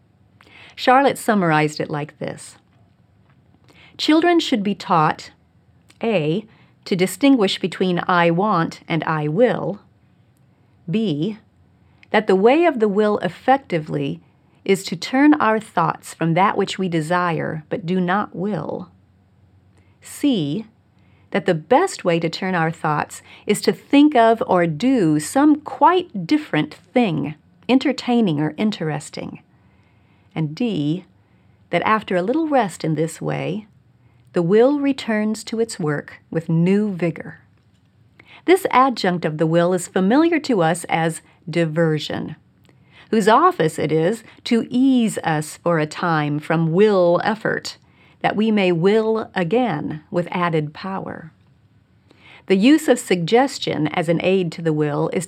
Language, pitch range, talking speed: English, 155-220 Hz, 135 wpm